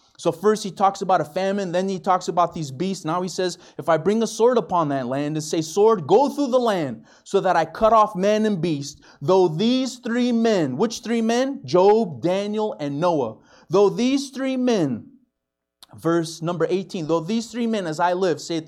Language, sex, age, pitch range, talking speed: English, male, 30-49, 125-185 Hz, 210 wpm